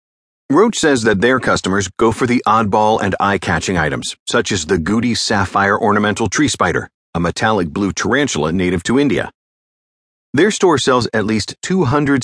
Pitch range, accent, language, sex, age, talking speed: 90-125 Hz, American, English, male, 50-69, 160 wpm